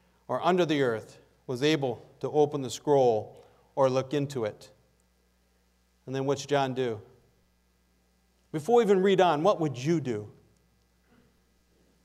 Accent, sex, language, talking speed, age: American, male, English, 140 wpm, 40-59